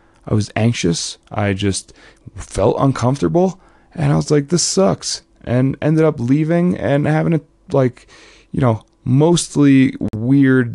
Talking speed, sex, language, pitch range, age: 140 wpm, male, English, 105-140 Hz, 20-39